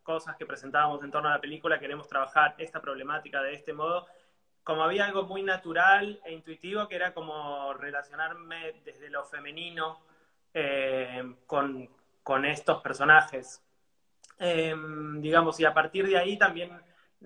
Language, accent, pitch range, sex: Spanish, Argentinian, 140-170 Hz, male